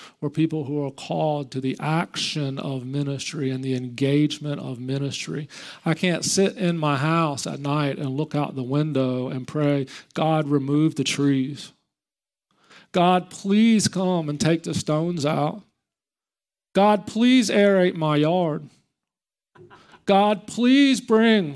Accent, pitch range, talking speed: American, 145-175 Hz, 135 wpm